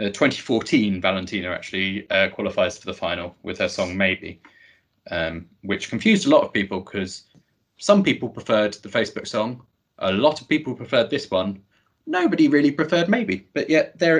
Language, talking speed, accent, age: English, 175 wpm, British, 20-39